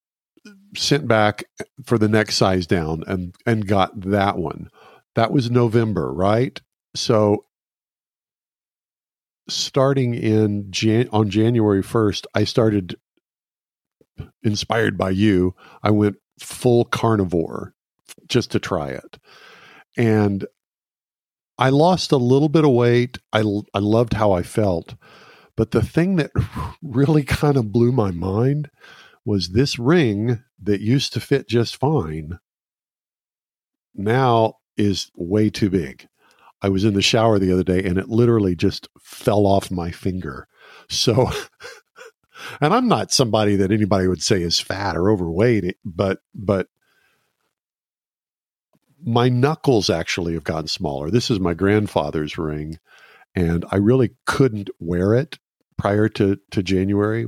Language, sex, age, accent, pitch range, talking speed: English, male, 50-69, American, 95-120 Hz, 130 wpm